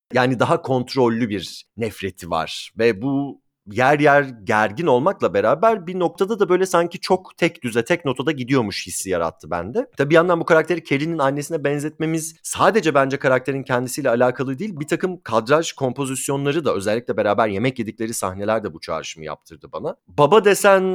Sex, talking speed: male, 165 wpm